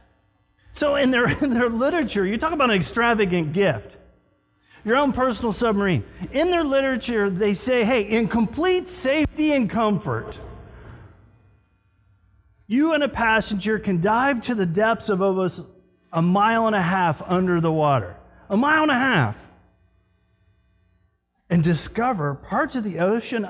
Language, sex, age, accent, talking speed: English, male, 40-59, American, 145 wpm